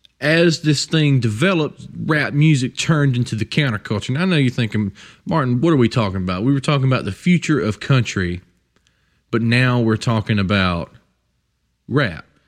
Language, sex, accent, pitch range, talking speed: English, male, American, 100-135 Hz, 170 wpm